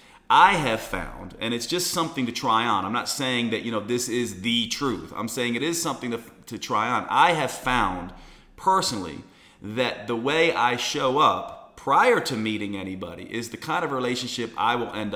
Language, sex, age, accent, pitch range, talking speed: English, male, 40-59, American, 110-140 Hz, 200 wpm